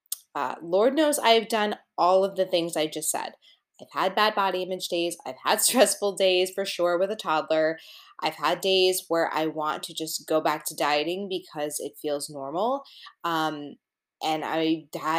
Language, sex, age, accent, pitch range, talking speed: English, female, 20-39, American, 170-210 Hz, 180 wpm